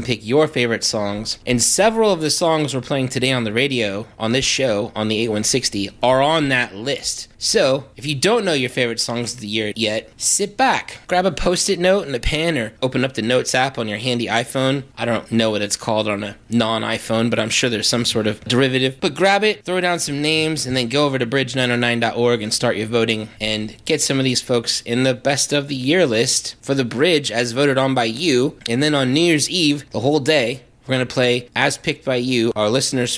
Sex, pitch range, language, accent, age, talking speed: male, 115-140 Hz, English, American, 20-39, 235 wpm